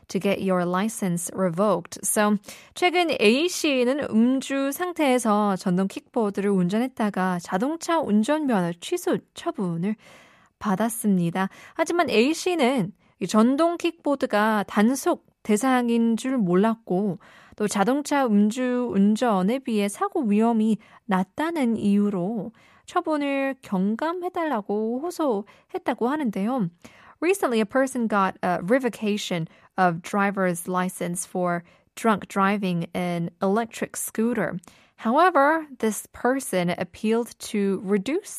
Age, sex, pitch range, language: 20-39, female, 190-255 Hz, Korean